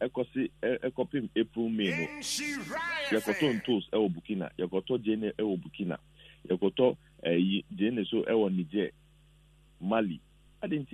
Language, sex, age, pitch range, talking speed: English, male, 50-69, 110-150 Hz, 130 wpm